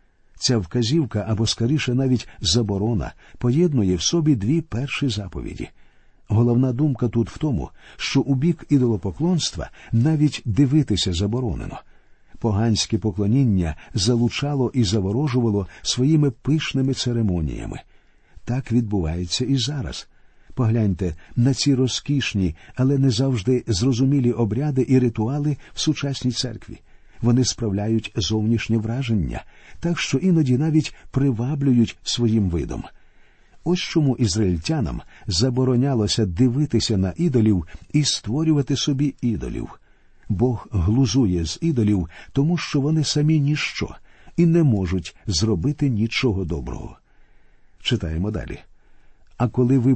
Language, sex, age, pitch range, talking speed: Ukrainian, male, 50-69, 105-135 Hz, 110 wpm